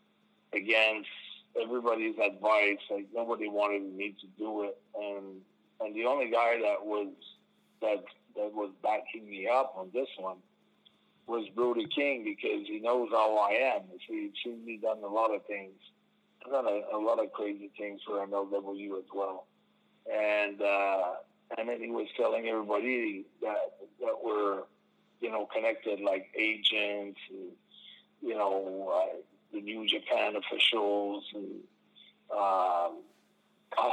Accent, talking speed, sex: American, 145 wpm, male